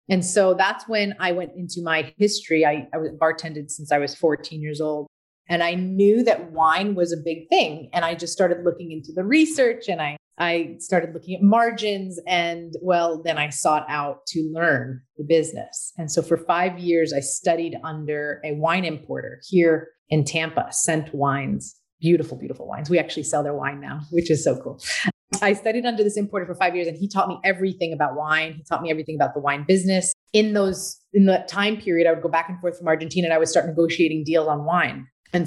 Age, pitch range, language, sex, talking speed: 30-49, 160-190 Hz, English, female, 215 wpm